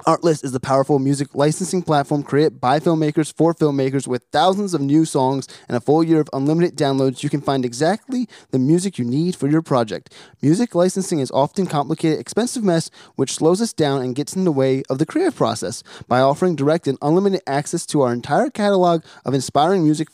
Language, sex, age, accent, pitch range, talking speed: English, male, 20-39, American, 135-180 Hz, 205 wpm